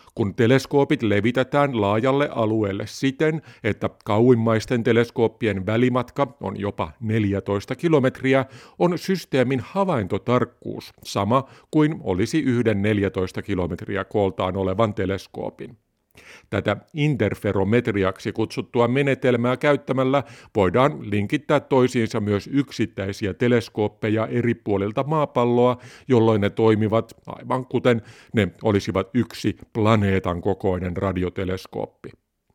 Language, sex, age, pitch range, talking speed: Finnish, male, 50-69, 100-125 Hz, 95 wpm